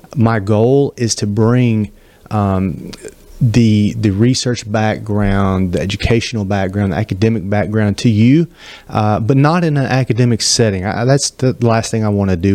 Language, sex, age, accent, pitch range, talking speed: English, male, 30-49, American, 100-125 Hz, 160 wpm